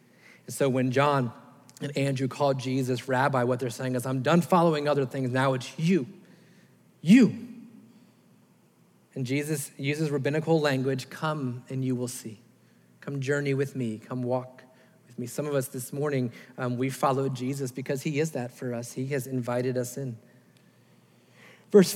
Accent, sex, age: American, male, 40-59